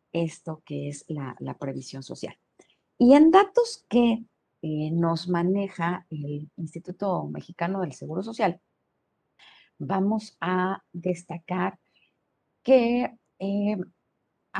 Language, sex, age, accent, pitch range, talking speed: Spanish, female, 40-59, Mexican, 160-215 Hz, 105 wpm